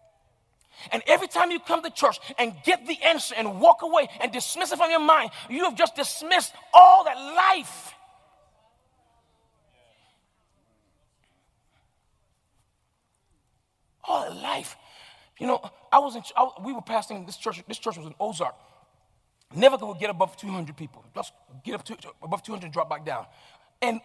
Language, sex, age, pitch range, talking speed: English, male, 40-59, 205-300 Hz, 160 wpm